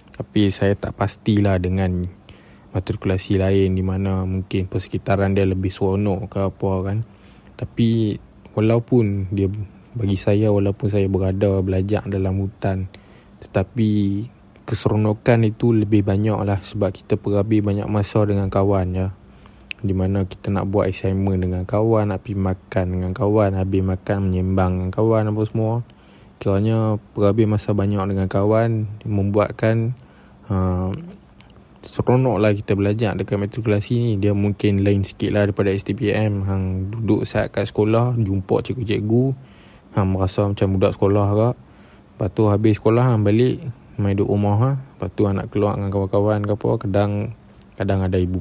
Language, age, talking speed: Malay, 20-39, 150 wpm